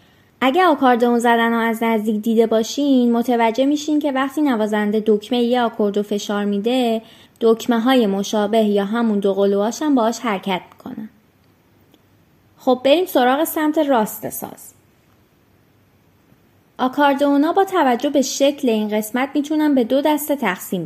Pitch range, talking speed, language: 210-265 Hz, 135 wpm, Persian